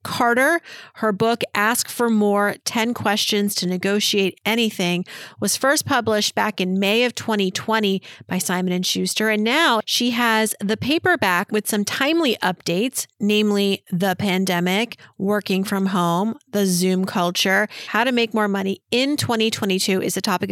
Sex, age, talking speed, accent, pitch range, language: female, 40-59, 150 wpm, American, 195-245 Hz, English